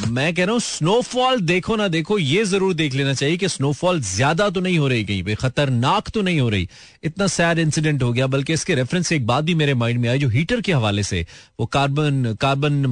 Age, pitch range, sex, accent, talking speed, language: 30-49, 115-150 Hz, male, native, 230 wpm, Hindi